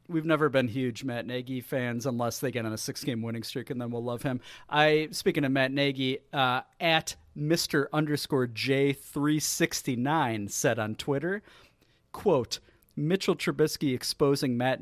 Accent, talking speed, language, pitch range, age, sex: American, 165 wpm, English, 125-160 Hz, 40-59, male